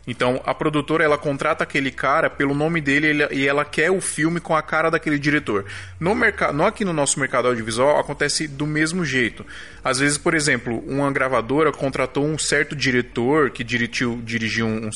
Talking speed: 190 wpm